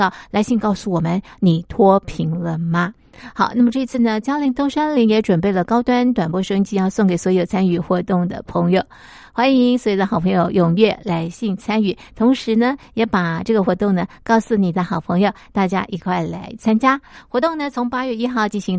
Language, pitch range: Chinese, 180-235 Hz